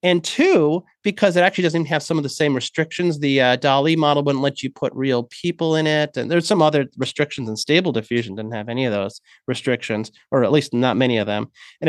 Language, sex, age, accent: English, male, 30-49, American